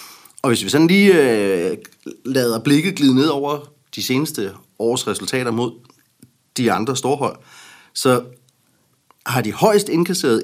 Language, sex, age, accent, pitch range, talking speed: Danish, male, 30-49, native, 105-135 Hz, 130 wpm